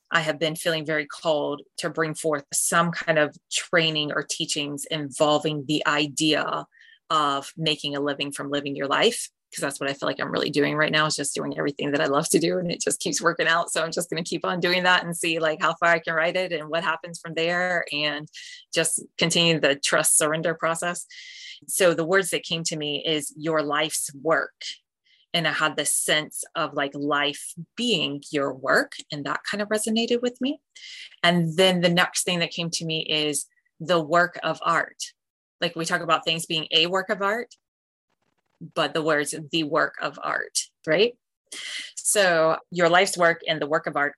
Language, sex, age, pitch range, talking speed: English, female, 20-39, 150-175 Hz, 205 wpm